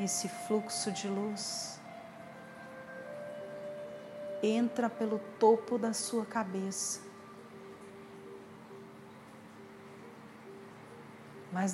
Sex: female